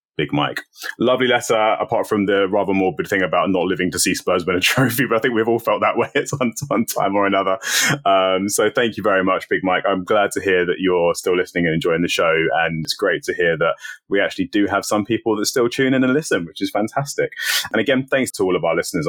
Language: English